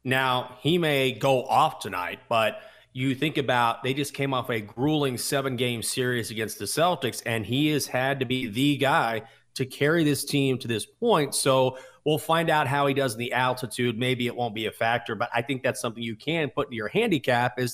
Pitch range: 120-160 Hz